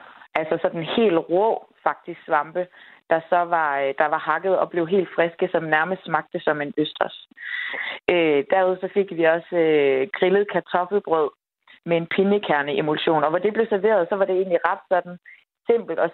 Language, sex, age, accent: Danish, female, 30-49, native